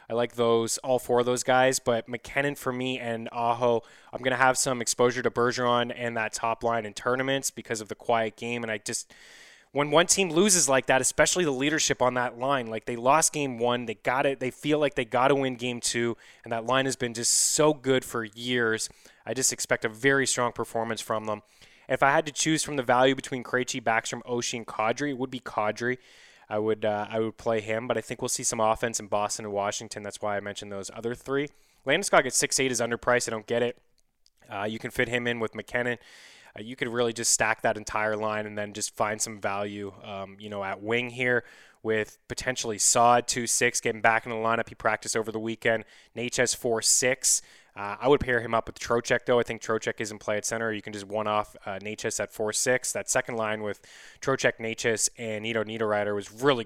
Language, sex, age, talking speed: English, male, 20-39, 230 wpm